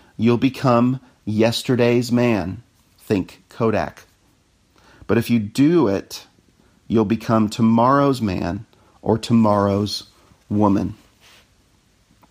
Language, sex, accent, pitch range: English, male, American, 100-130 Hz